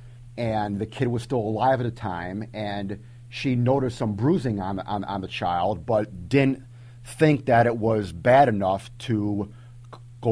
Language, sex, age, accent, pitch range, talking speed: English, male, 40-59, American, 105-120 Hz, 170 wpm